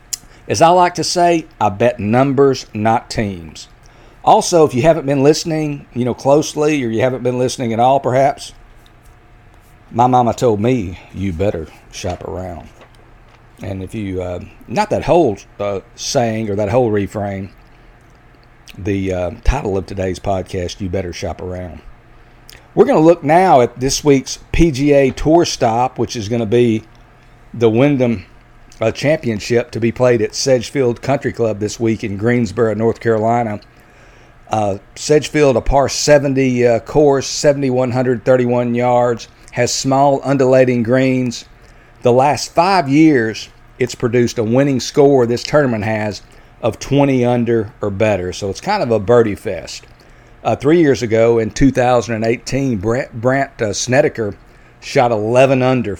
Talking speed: 150 wpm